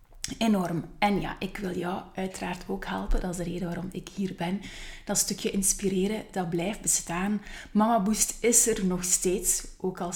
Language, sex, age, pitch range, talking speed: Dutch, female, 20-39, 175-215 Hz, 175 wpm